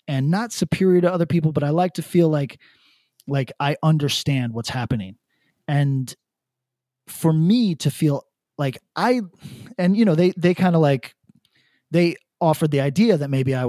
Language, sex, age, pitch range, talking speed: English, male, 30-49, 130-175 Hz, 170 wpm